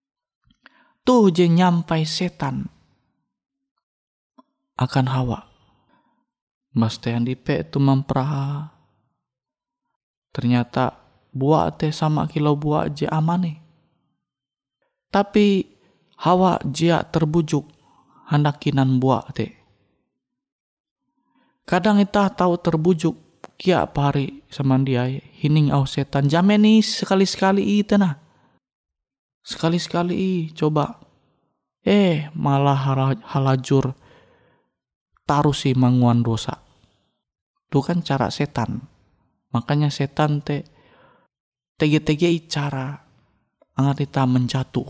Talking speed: 85 wpm